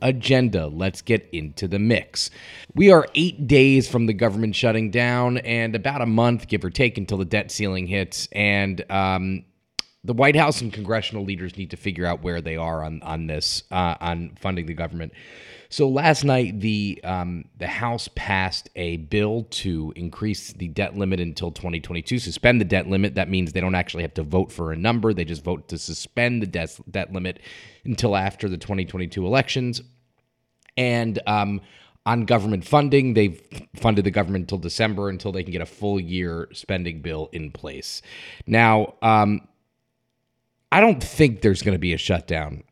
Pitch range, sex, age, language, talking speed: 85-115 Hz, male, 30-49, English, 185 wpm